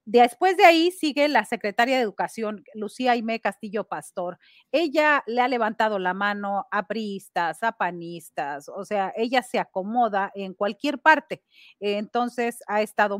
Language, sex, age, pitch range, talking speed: Spanish, female, 40-59, 200-250 Hz, 150 wpm